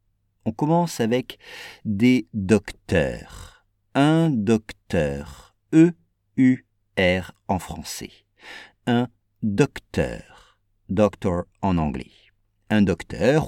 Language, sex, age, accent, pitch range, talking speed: English, male, 50-69, French, 100-145 Hz, 75 wpm